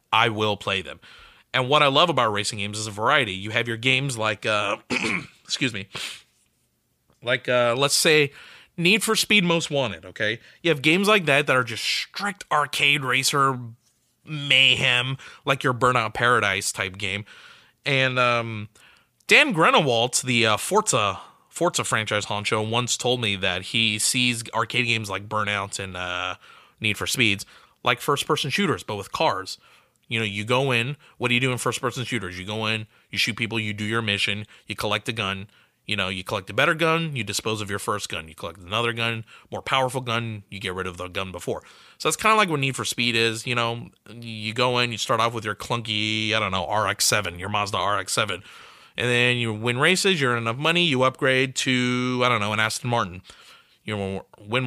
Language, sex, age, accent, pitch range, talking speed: English, male, 30-49, American, 105-130 Hz, 205 wpm